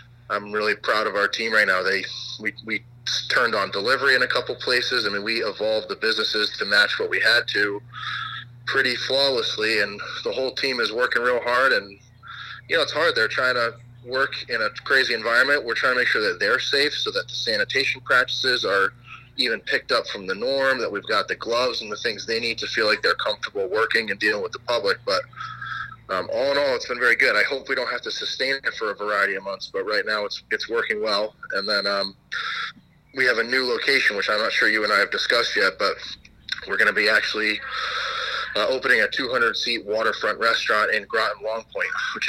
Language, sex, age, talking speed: English, male, 30-49, 225 wpm